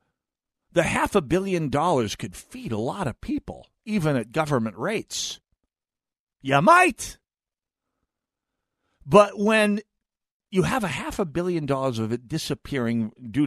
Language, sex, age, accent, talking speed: English, male, 50-69, American, 135 wpm